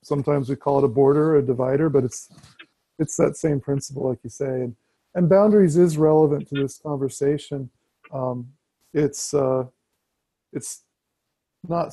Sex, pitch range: male, 135-165 Hz